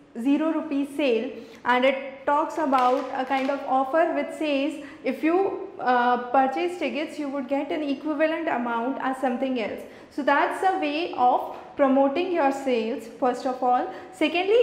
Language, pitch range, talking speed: English, 265-325 Hz, 160 wpm